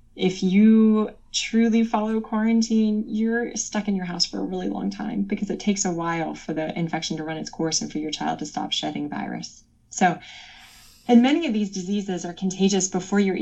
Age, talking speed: 20-39, 200 wpm